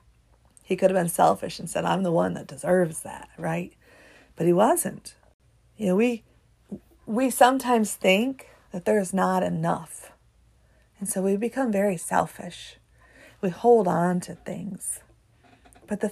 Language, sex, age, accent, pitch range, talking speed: English, female, 40-59, American, 175-225 Hz, 155 wpm